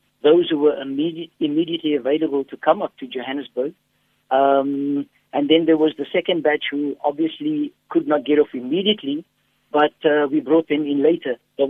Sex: male